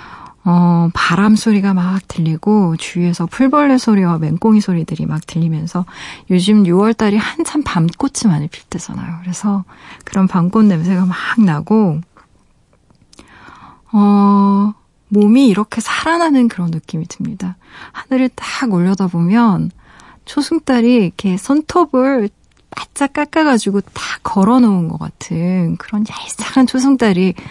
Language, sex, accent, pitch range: Korean, female, native, 170-215 Hz